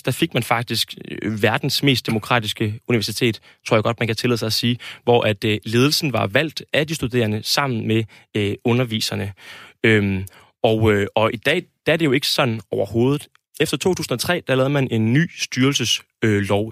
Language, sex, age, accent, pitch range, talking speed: Danish, male, 20-39, native, 110-140 Hz, 170 wpm